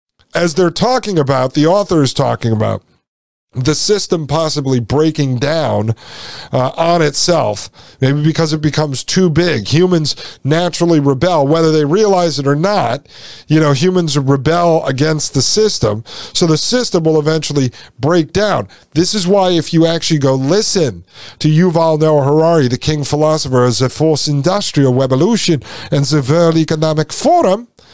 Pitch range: 140-185 Hz